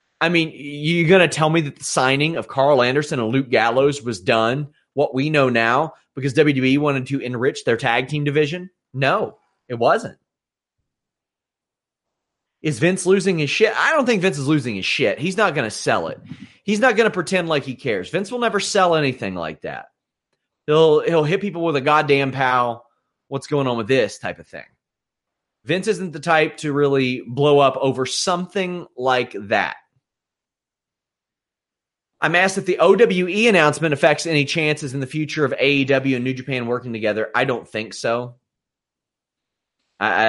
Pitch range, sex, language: 125-170 Hz, male, English